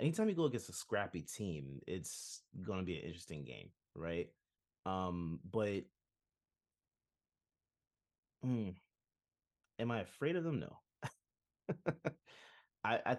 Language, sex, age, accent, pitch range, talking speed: English, male, 30-49, American, 80-95 Hz, 115 wpm